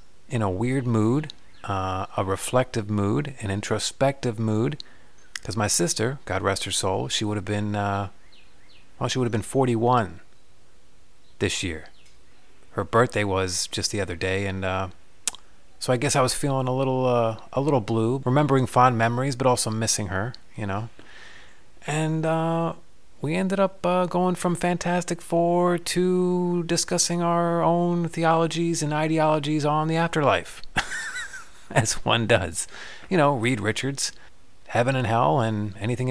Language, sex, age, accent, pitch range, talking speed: English, male, 30-49, American, 105-165 Hz, 155 wpm